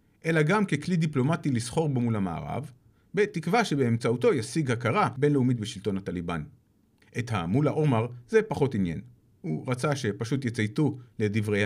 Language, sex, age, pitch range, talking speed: Hebrew, male, 40-59, 105-145 Hz, 135 wpm